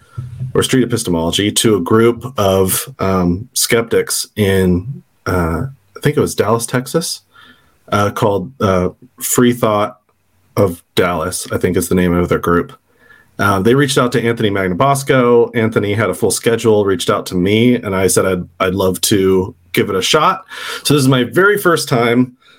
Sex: male